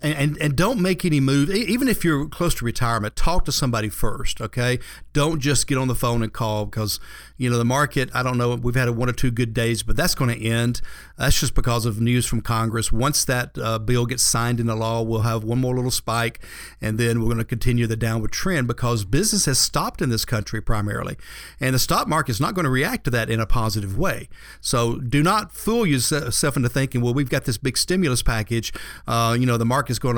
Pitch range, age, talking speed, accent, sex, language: 115-140 Hz, 50-69, 240 wpm, American, male, English